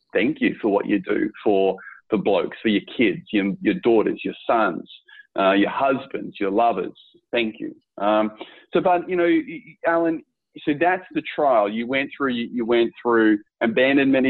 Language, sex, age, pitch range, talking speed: English, male, 30-49, 115-150 Hz, 175 wpm